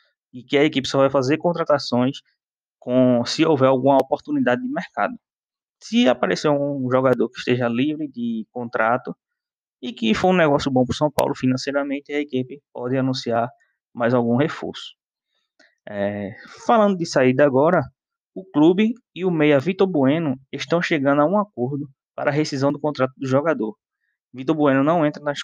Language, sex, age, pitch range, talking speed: Portuguese, male, 20-39, 120-150 Hz, 165 wpm